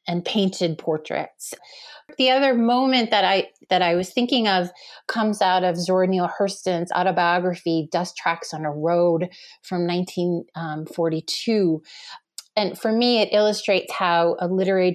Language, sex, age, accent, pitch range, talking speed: English, female, 30-49, American, 170-200 Hz, 140 wpm